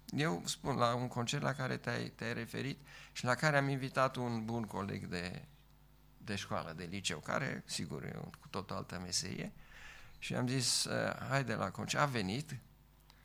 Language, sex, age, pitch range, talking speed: Romanian, male, 50-69, 100-130 Hz, 180 wpm